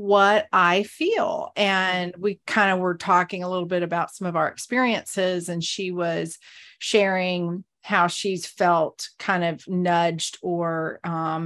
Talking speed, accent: 150 wpm, American